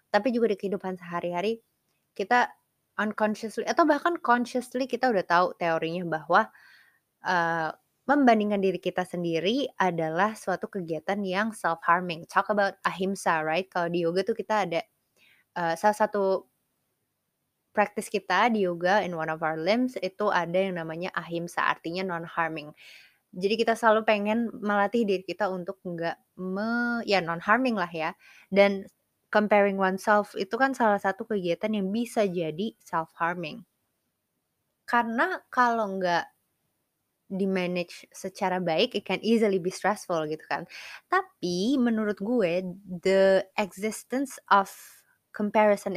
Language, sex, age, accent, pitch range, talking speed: Indonesian, female, 20-39, native, 175-220 Hz, 130 wpm